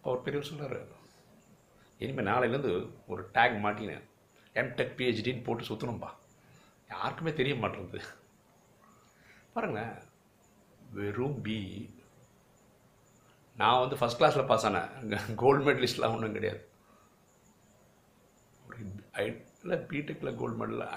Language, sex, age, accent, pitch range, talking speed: Tamil, male, 60-79, native, 105-135 Hz, 100 wpm